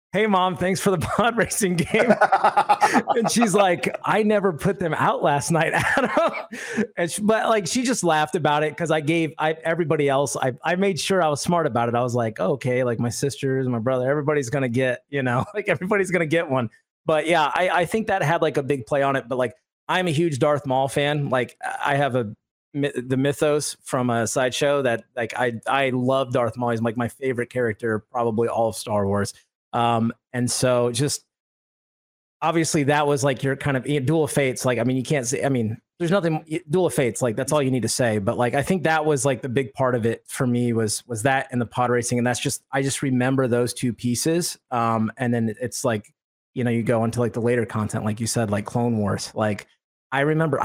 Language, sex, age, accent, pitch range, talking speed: English, male, 30-49, American, 120-160 Hz, 235 wpm